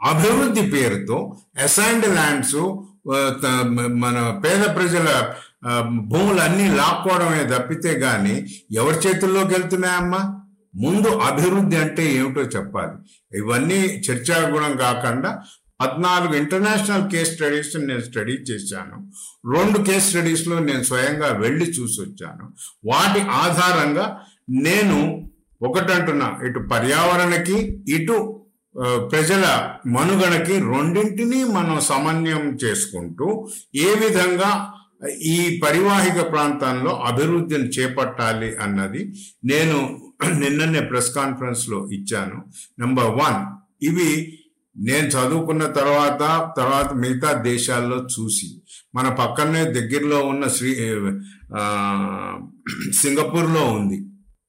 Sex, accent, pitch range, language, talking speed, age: male, native, 125-185 Hz, Telugu, 75 wpm, 50-69